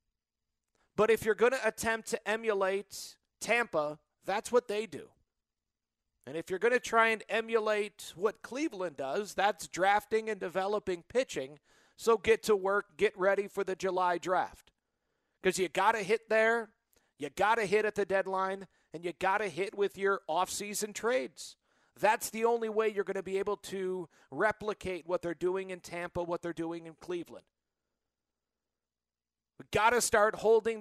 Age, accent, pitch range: 40-59, American, 185-220 Hz